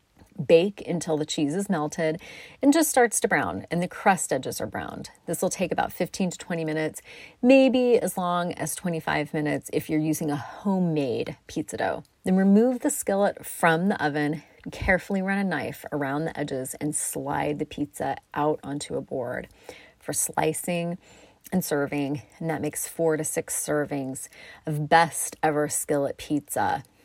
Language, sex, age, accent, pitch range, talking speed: English, female, 30-49, American, 150-190 Hz, 170 wpm